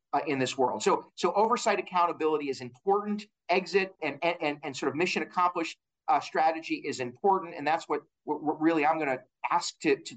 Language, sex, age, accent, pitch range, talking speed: English, male, 40-59, American, 140-195 Hz, 200 wpm